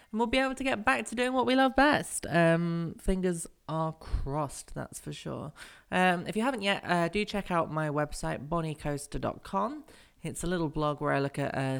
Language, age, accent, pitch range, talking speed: English, 20-39, British, 135-190 Hz, 210 wpm